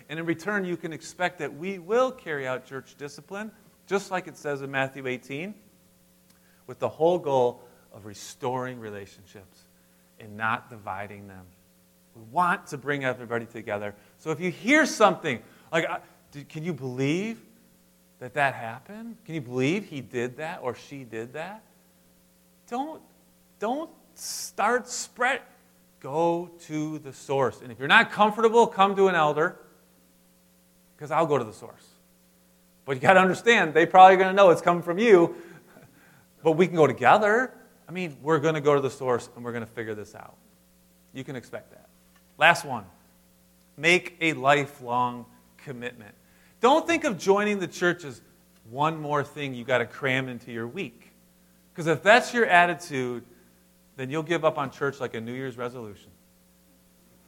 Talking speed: 170 wpm